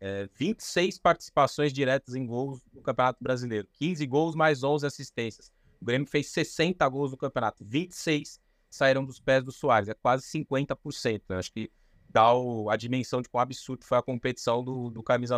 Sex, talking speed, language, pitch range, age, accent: male, 180 wpm, Portuguese, 115-145 Hz, 20-39, Brazilian